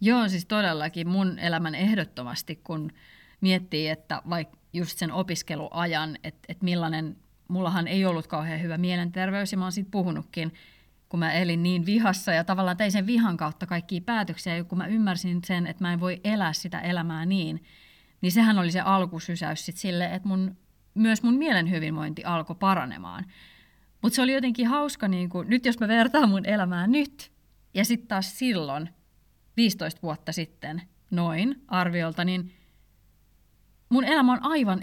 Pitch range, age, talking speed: 170-205 Hz, 30-49, 165 wpm